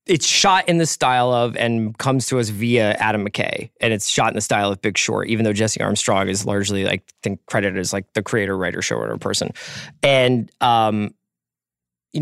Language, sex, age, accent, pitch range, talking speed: English, male, 20-39, American, 115-155 Hz, 205 wpm